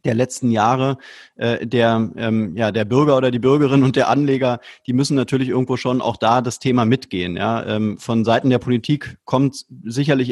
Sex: male